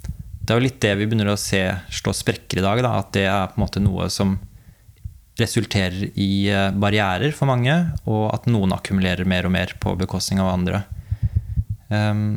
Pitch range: 95-110 Hz